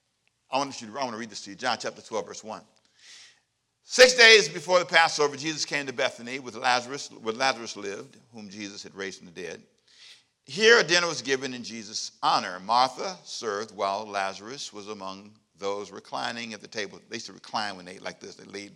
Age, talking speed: 50-69, 195 wpm